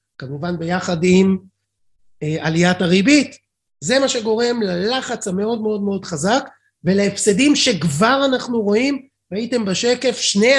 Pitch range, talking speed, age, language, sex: 185-240 Hz, 120 wpm, 30-49, Hebrew, male